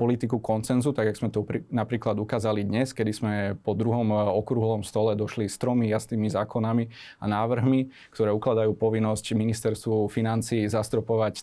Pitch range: 110-125 Hz